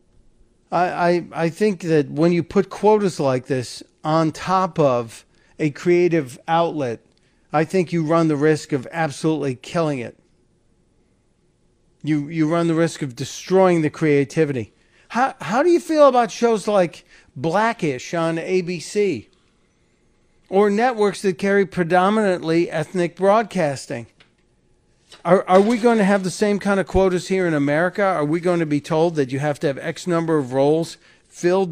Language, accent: English, American